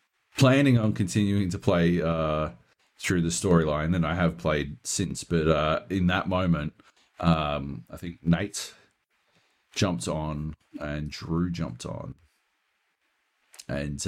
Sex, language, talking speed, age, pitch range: male, English, 130 wpm, 40-59, 80-105 Hz